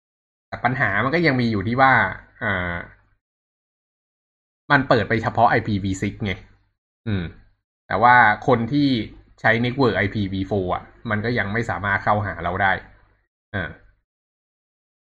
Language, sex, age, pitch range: Thai, male, 20-39, 95-115 Hz